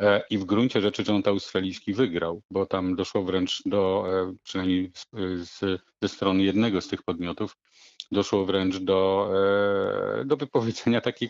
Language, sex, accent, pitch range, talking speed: Polish, male, native, 95-105 Hz, 135 wpm